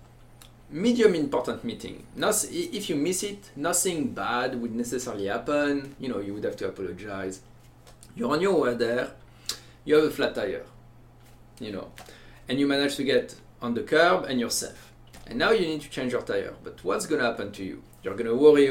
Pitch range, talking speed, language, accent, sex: 115-145 Hz, 195 wpm, English, French, male